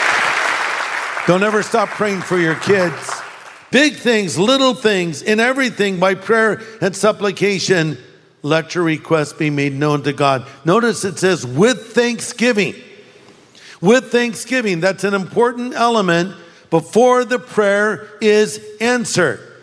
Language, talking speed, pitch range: English, 125 wpm, 180-225 Hz